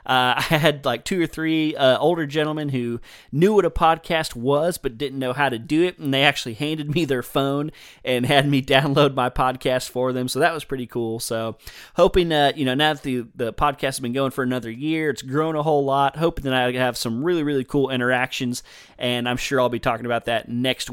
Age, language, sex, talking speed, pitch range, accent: 30-49, English, male, 235 wpm, 125-150 Hz, American